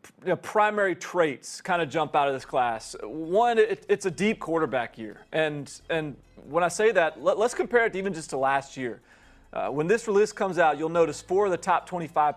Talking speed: 230 wpm